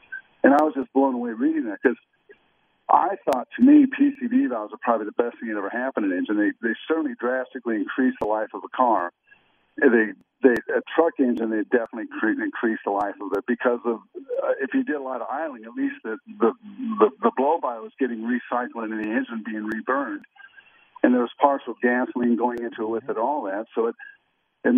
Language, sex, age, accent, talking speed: English, male, 50-69, American, 215 wpm